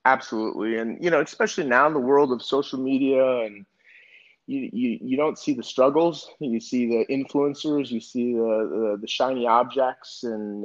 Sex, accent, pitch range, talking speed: male, American, 95-125 Hz, 180 wpm